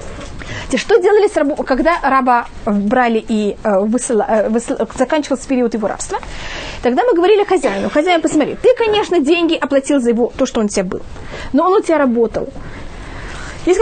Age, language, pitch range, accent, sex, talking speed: 20-39, Russian, 245-335 Hz, native, female, 165 wpm